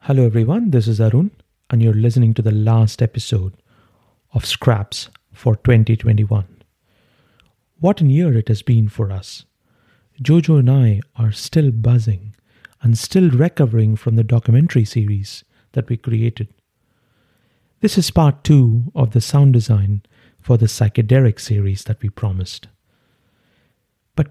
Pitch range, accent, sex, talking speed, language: 110-135 Hz, Indian, male, 140 wpm, English